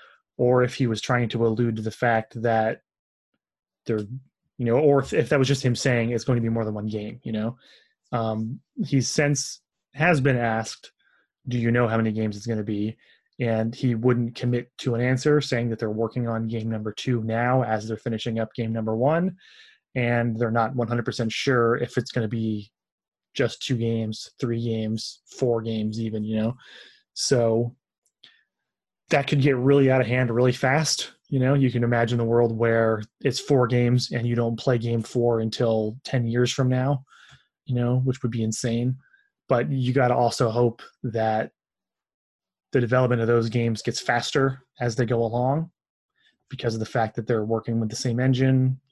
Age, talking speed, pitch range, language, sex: 20-39, 195 wpm, 115-130 Hz, English, male